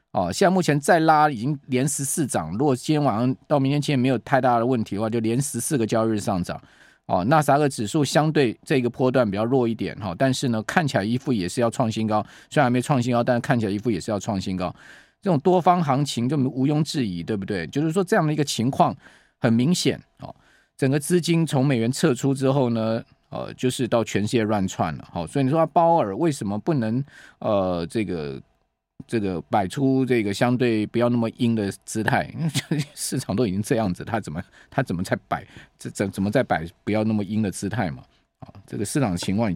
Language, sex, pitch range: Chinese, male, 110-145 Hz